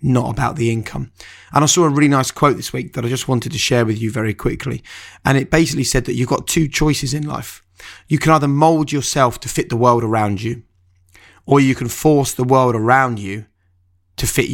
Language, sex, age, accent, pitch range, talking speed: English, male, 30-49, British, 110-130 Hz, 225 wpm